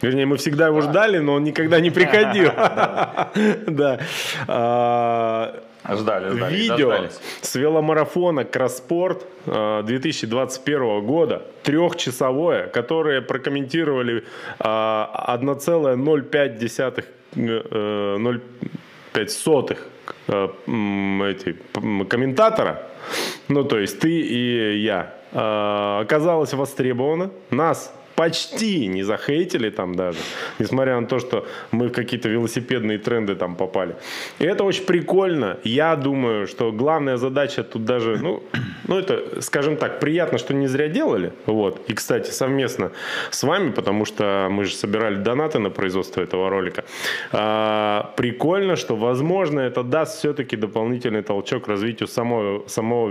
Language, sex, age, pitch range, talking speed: Russian, male, 20-39, 110-150 Hz, 105 wpm